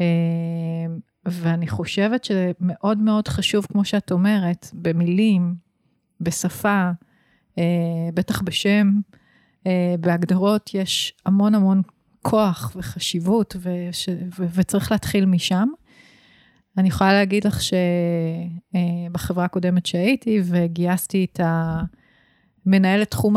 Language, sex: Hebrew, female